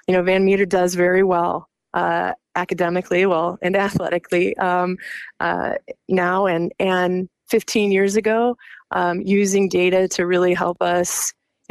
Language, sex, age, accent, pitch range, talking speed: English, female, 20-39, American, 175-195 Hz, 145 wpm